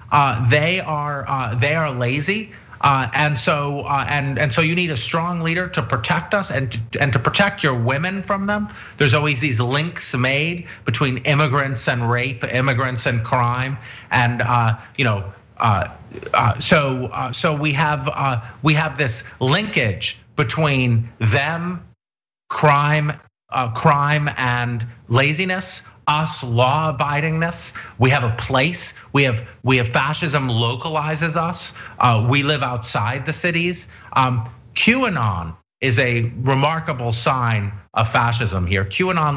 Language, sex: English, male